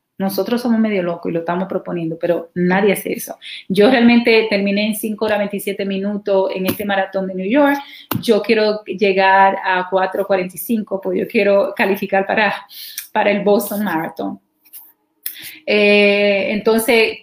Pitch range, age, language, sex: 200-250 Hz, 30-49, Spanish, female